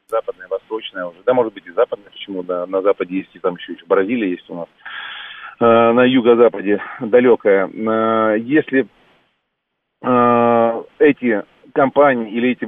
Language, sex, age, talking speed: Russian, male, 40-59, 135 wpm